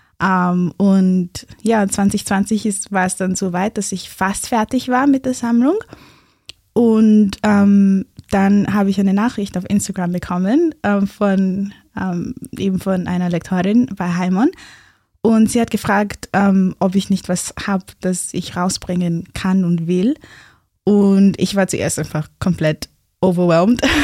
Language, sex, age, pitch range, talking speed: German, female, 20-39, 185-215 Hz, 145 wpm